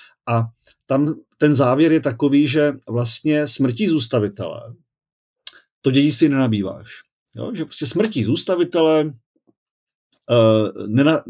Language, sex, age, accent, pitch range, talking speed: Czech, male, 40-59, native, 115-155 Hz, 100 wpm